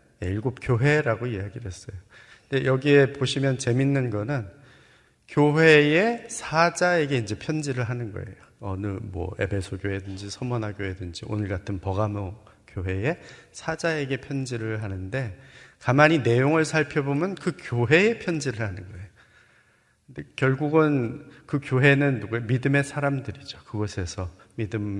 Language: Korean